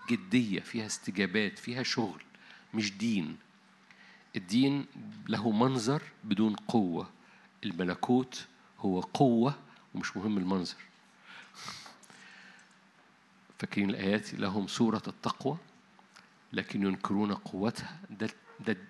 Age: 50-69